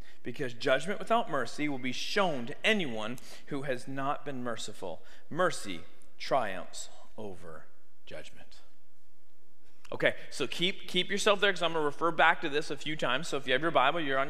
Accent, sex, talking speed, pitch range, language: American, male, 180 wpm, 175-235 Hz, English